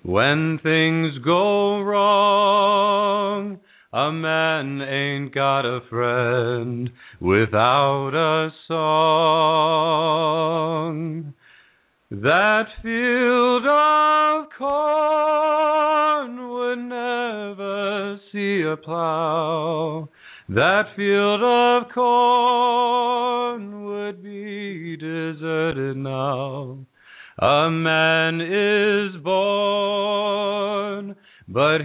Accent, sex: American, male